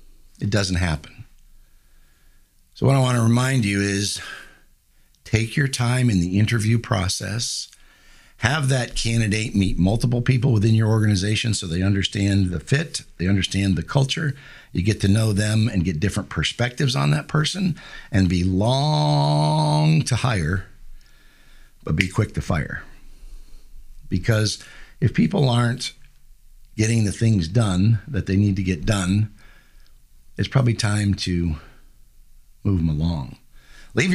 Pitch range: 100-130 Hz